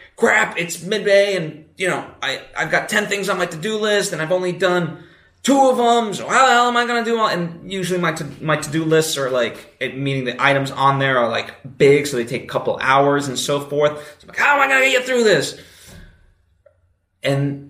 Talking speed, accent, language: 240 wpm, American, English